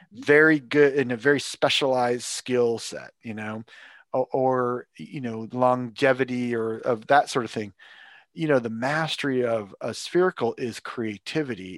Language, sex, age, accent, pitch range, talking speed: English, male, 40-59, American, 115-145 Hz, 155 wpm